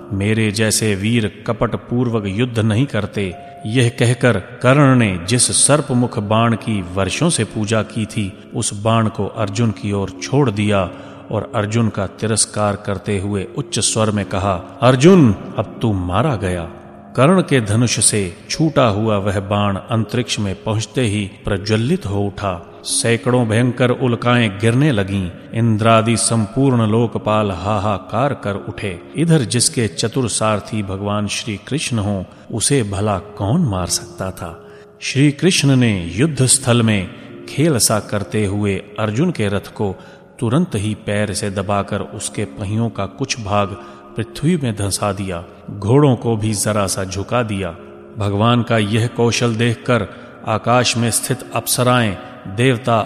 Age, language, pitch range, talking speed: 30-49, Hindi, 100-120 Hz, 135 wpm